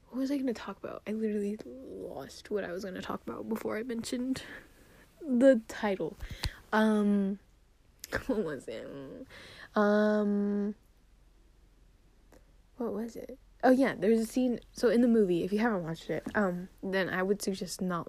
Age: 10-29